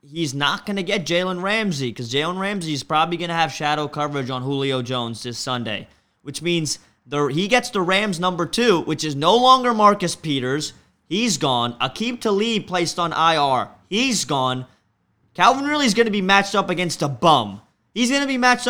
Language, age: English, 20-39